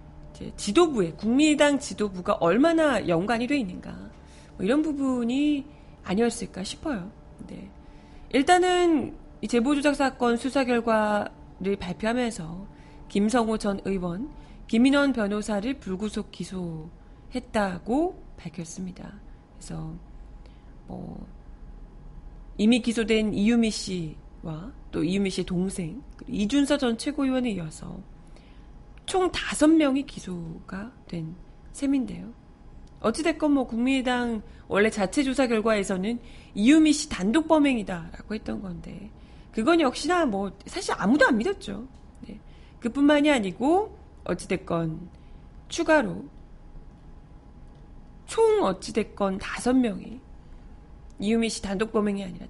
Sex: female